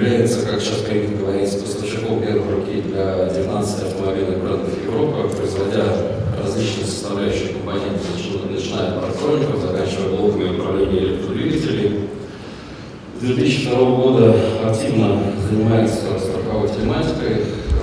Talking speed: 100 wpm